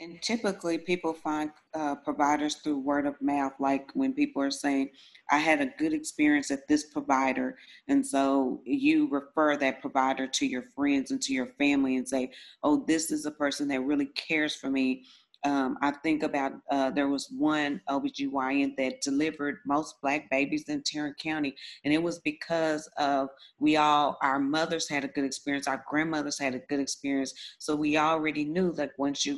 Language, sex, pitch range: English, female, 140-160 Hz